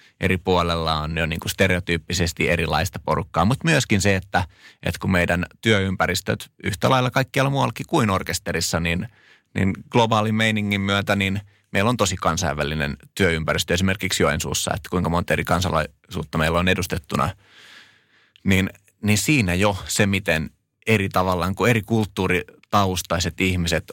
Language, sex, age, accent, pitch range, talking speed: Finnish, male, 30-49, native, 85-105 Hz, 135 wpm